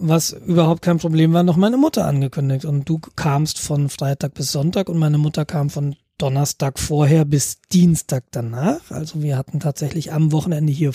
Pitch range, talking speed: 150-180 Hz, 180 wpm